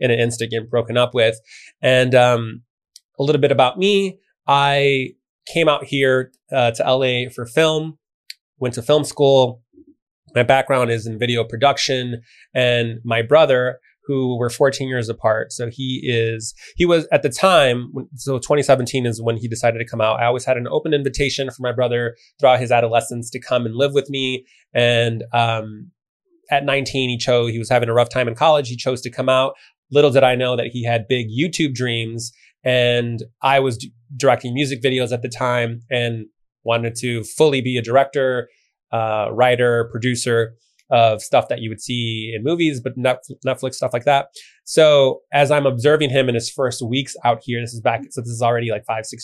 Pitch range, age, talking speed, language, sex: 115-135 Hz, 20-39, 195 wpm, English, male